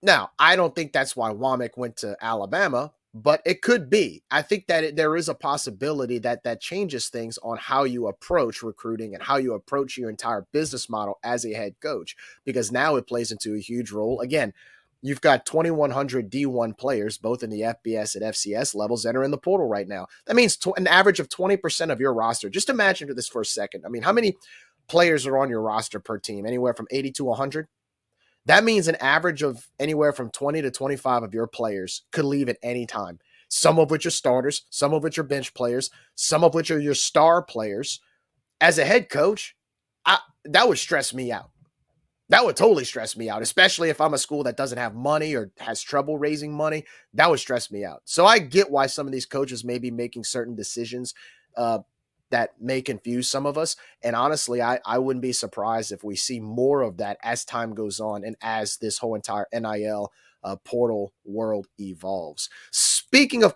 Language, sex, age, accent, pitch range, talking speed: English, male, 30-49, American, 115-155 Hz, 210 wpm